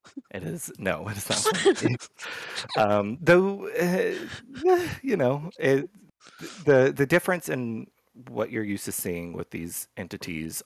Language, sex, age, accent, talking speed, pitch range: English, male, 30-49, American, 135 wpm, 85-120 Hz